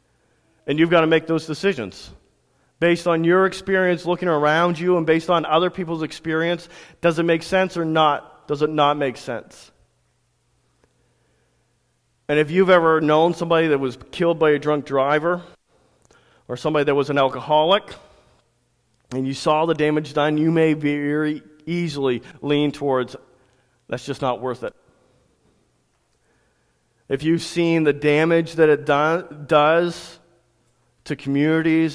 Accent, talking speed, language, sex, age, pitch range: American, 145 wpm, English, male, 40-59, 140-165 Hz